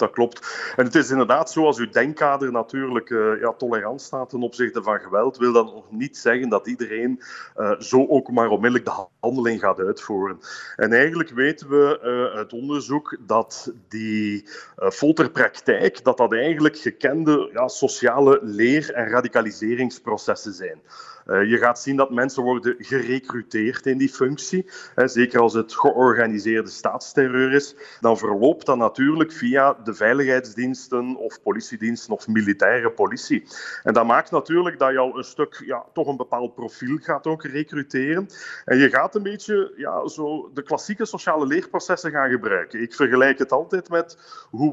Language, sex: Dutch, male